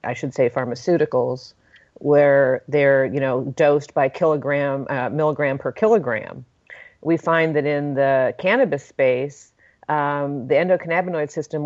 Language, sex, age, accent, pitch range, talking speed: English, female, 40-59, American, 140-160 Hz, 135 wpm